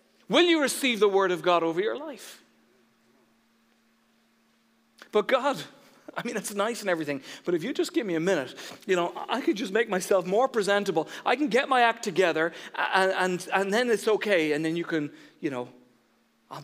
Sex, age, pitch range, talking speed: male, 40-59, 115-190 Hz, 190 wpm